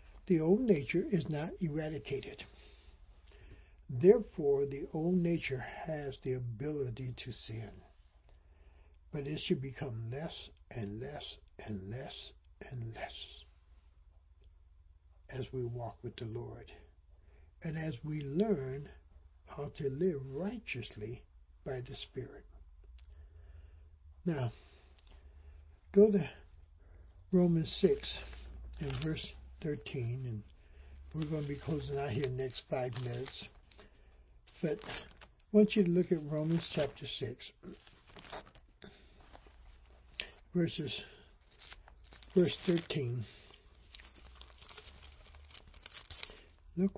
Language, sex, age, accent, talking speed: English, male, 60-79, American, 100 wpm